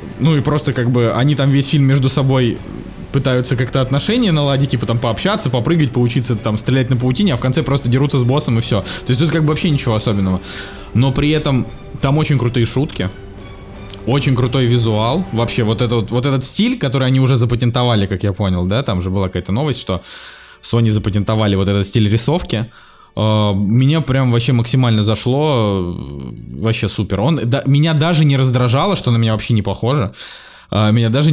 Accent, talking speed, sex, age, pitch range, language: native, 185 wpm, male, 20-39, 105-140 Hz, Russian